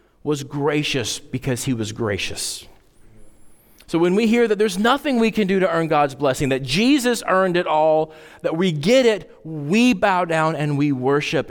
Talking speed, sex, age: 185 wpm, male, 40-59